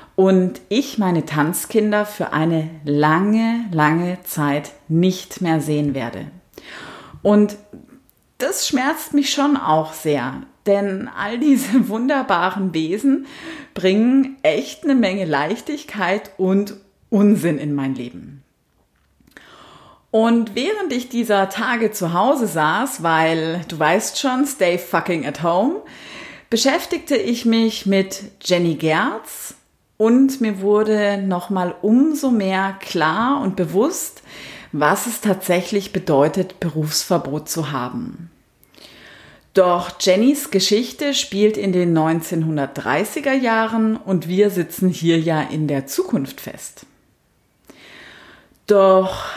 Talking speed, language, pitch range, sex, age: 110 wpm, German, 165-230 Hz, female, 30-49